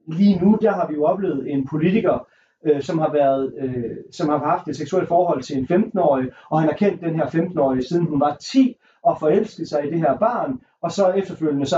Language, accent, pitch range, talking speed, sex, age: Danish, native, 135-200 Hz, 230 wpm, male, 40-59